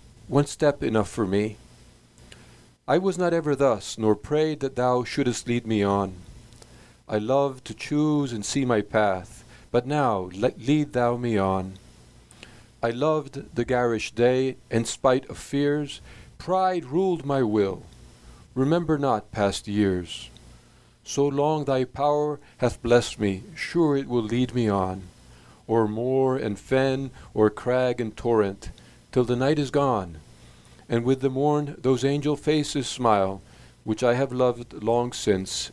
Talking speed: 150 wpm